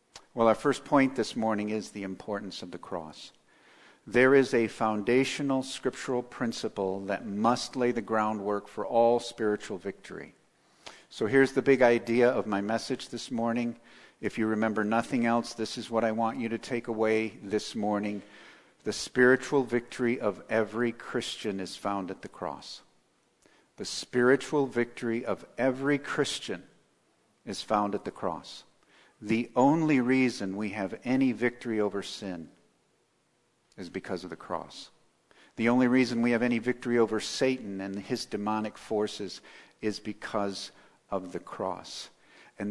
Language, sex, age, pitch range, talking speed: English, male, 50-69, 105-125 Hz, 150 wpm